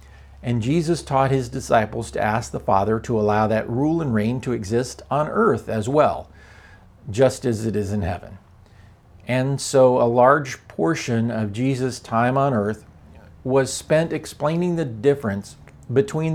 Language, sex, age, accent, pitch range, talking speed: English, male, 50-69, American, 105-135 Hz, 160 wpm